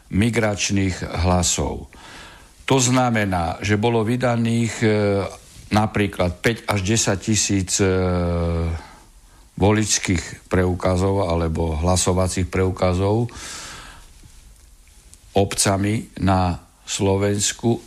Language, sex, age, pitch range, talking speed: Slovak, male, 60-79, 90-115 Hz, 75 wpm